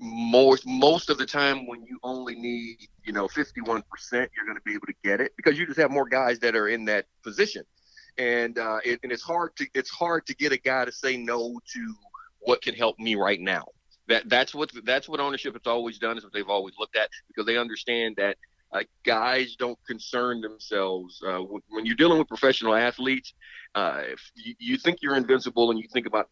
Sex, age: male, 40-59